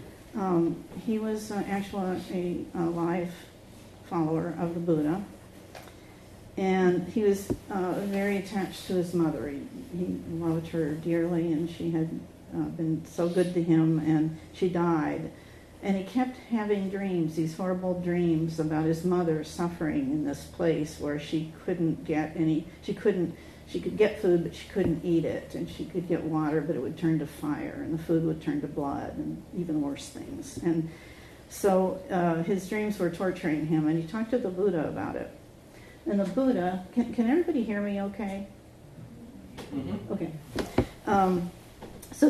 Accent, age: American, 50-69